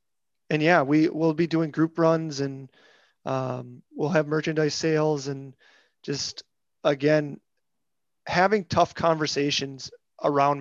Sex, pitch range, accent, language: male, 145-165 Hz, American, English